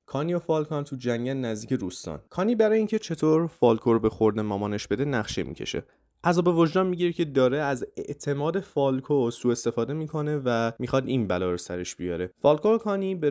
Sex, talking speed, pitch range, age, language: male, 180 wpm, 115-160 Hz, 20-39, Persian